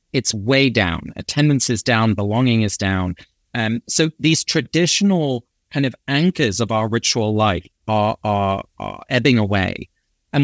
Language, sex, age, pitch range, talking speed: English, male, 30-49, 110-145 Hz, 150 wpm